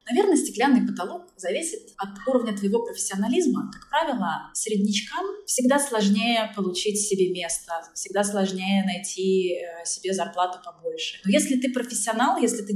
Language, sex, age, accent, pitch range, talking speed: Russian, female, 20-39, native, 200-255 Hz, 130 wpm